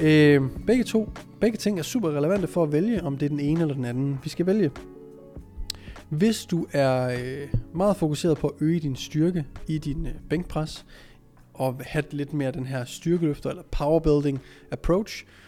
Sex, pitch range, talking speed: male, 135-170 Hz, 170 wpm